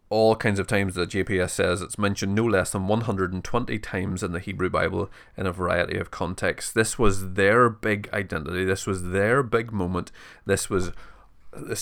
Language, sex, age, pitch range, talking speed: English, male, 30-49, 95-115 Hz, 185 wpm